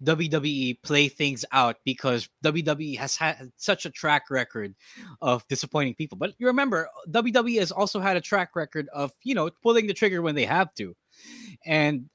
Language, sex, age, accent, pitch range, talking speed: English, male, 20-39, Filipino, 130-170 Hz, 180 wpm